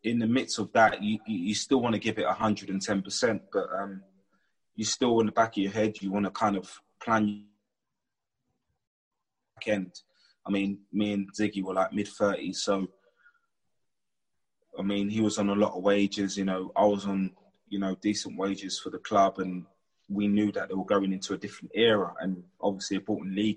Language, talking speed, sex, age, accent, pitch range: English, 195 wpm, male, 20-39, British, 95-105 Hz